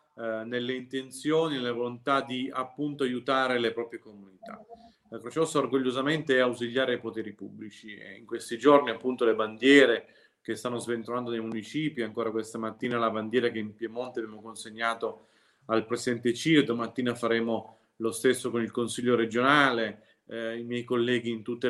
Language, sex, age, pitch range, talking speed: Italian, male, 30-49, 115-130 Hz, 165 wpm